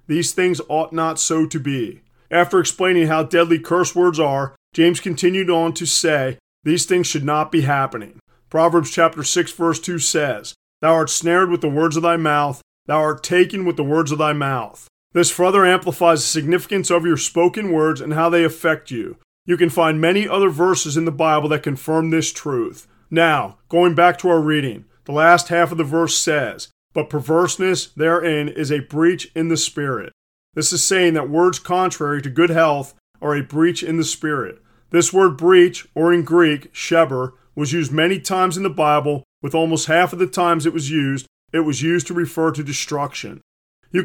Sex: male